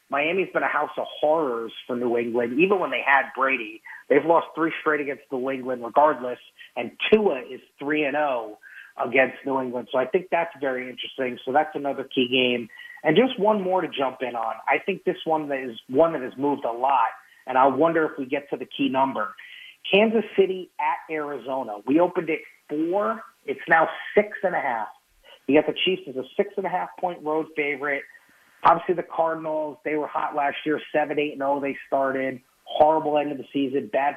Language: English